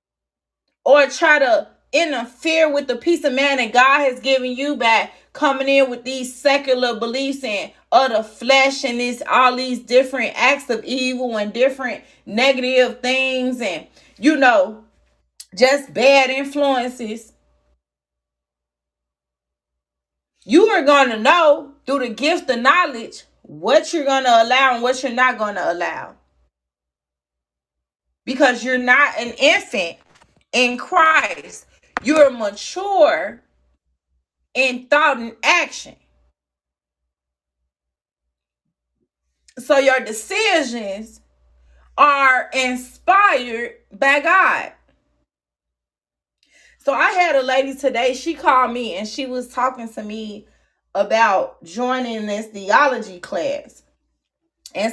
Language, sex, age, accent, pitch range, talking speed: English, female, 30-49, American, 205-275 Hz, 115 wpm